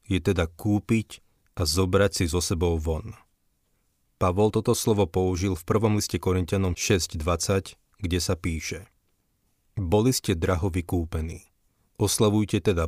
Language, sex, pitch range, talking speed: Slovak, male, 85-105 Hz, 130 wpm